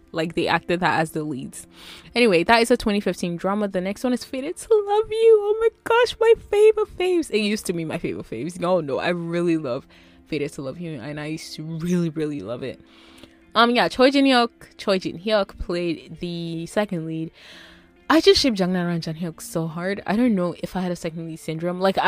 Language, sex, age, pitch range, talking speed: English, female, 20-39, 165-225 Hz, 225 wpm